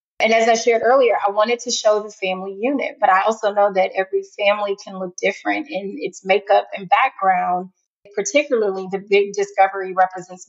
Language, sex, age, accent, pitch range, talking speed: English, female, 30-49, American, 185-220 Hz, 185 wpm